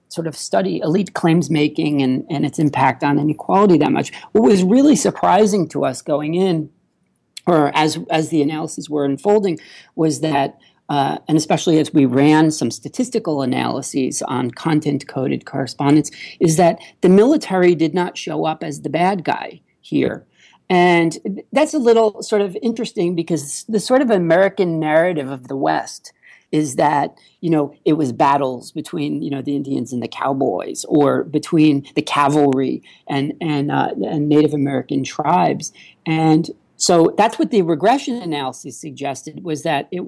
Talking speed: 165 wpm